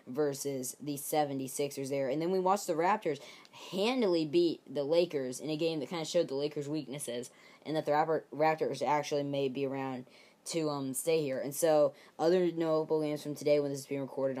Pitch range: 140-160 Hz